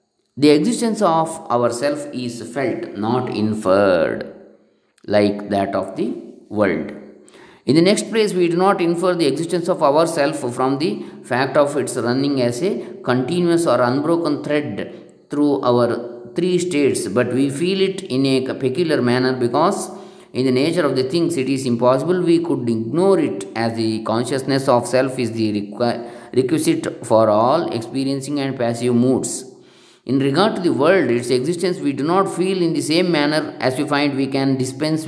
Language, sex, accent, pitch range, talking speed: English, male, Indian, 120-165 Hz, 170 wpm